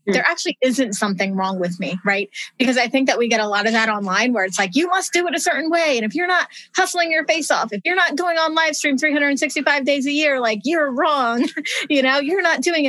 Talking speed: 260 wpm